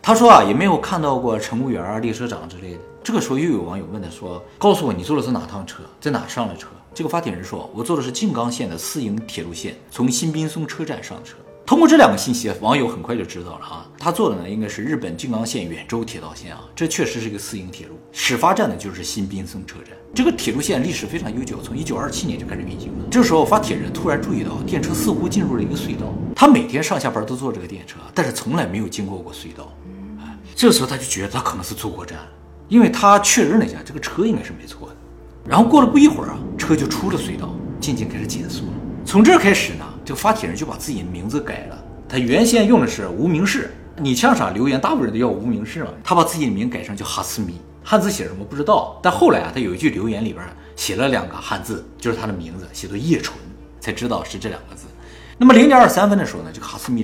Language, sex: Chinese, male